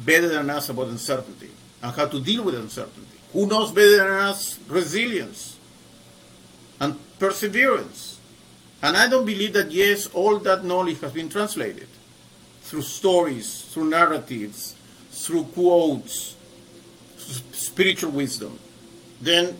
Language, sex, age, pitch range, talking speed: English, male, 50-69, 135-180 Hz, 120 wpm